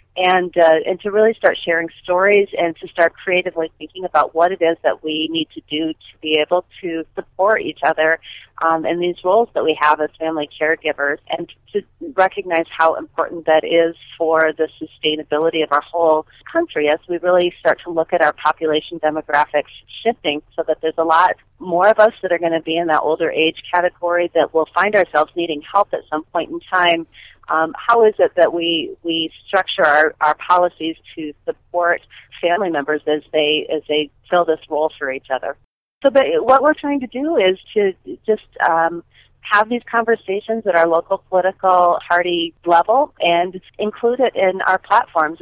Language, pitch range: English, 155-185 Hz